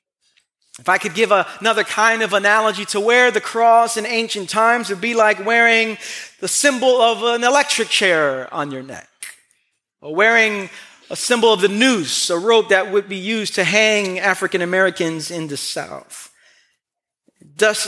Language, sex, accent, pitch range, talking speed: English, male, American, 205-270 Hz, 165 wpm